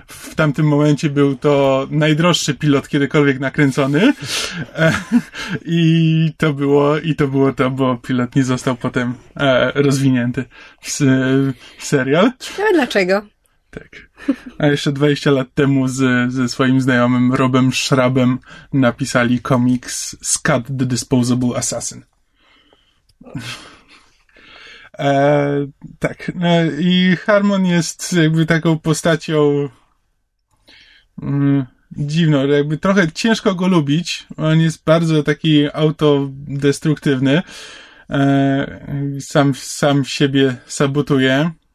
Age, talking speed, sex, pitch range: 20-39, 100 wpm, male, 135-160 Hz